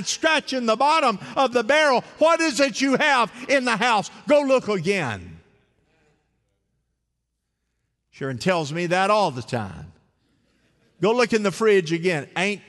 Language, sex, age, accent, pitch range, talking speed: English, male, 50-69, American, 135-225 Hz, 145 wpm